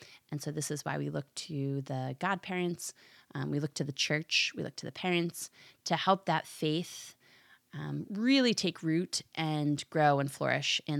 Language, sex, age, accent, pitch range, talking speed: English, female, 30-49, American, 145-170 Hz, 185 wpm